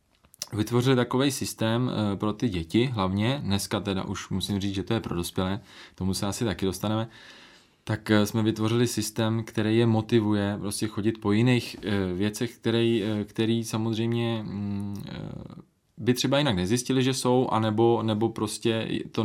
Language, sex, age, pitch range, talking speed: Czech, male, 20-39, 100-115 Hz, 145 wpm